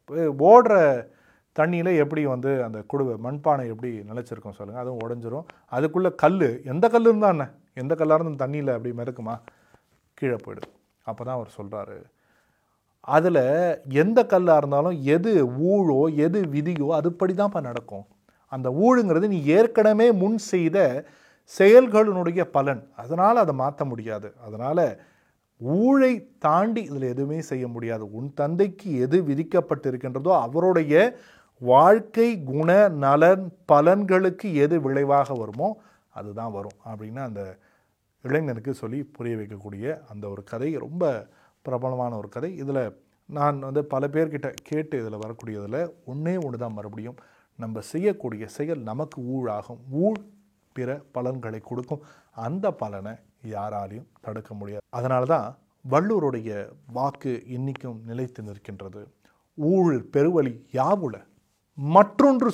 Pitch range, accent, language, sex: 115-170 Hz, native, Tamil, male